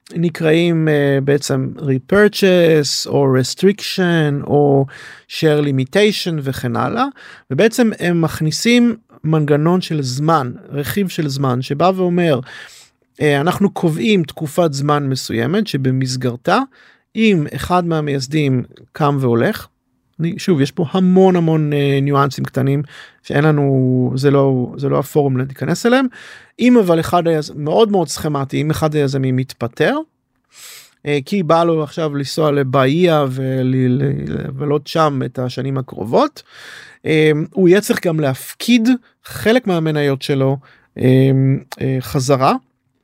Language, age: Hebrew, 40-59